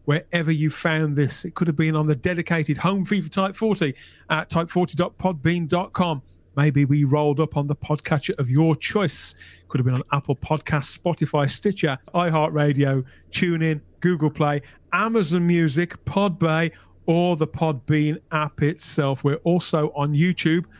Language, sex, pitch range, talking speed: English, male, 150-185 Hz, 150 wpm